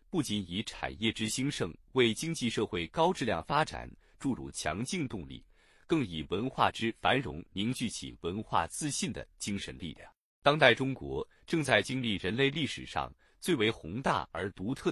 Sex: male